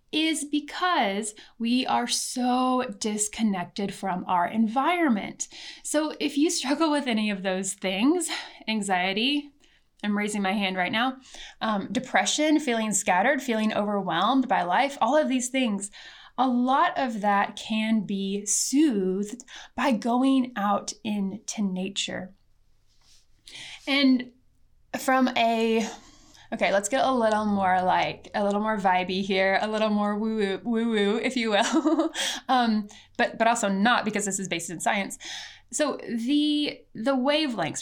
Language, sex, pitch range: English, female, 200-260 Hz